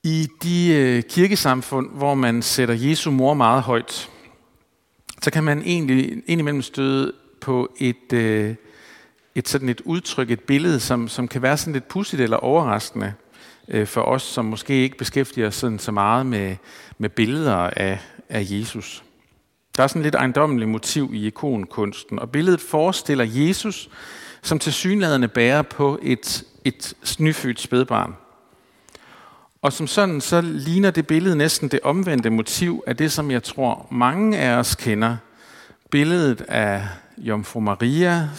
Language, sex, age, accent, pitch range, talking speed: Danish, male, 50-69, native, 110-150 Hz, 145 wpm